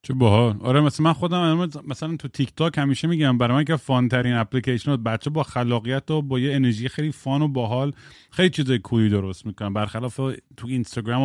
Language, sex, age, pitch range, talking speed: Persian, male, 30-49, 110-145 Hz, 215 wpm